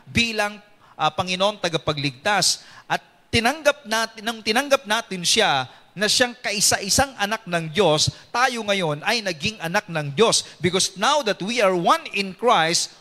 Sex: male